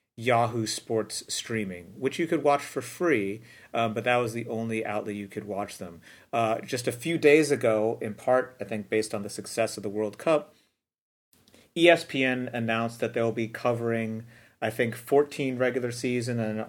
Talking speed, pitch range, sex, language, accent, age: 180 wpm, 110-130 Hz, male, English, American, 40-59